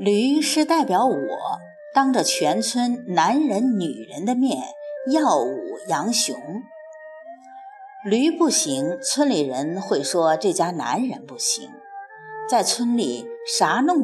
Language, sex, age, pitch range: Chinese, female, 50-69, 220-330 Hz